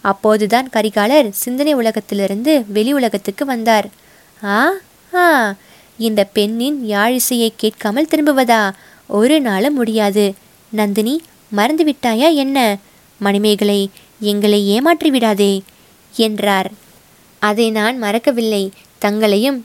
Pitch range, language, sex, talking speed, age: 205-250 Hz, Tamil, female, 90 wpm, 20-39